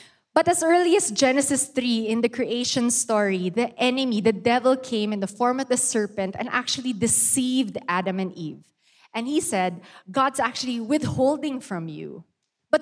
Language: English